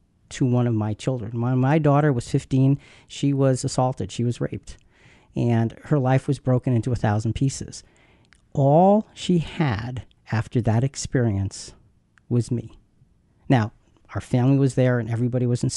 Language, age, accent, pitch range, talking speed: English, 50-69, American, 120-150 Hz, 155 wpm